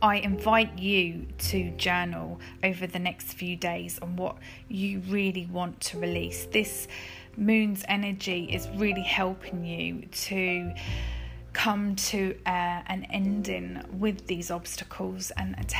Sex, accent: female, British